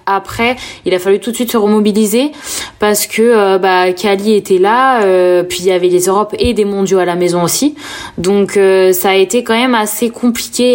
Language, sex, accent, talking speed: French, female, French, 220 wpm